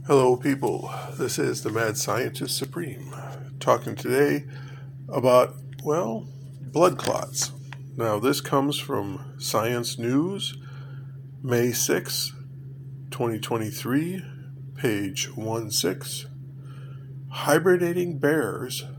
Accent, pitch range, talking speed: American, 130-135 Hz, 85 wpm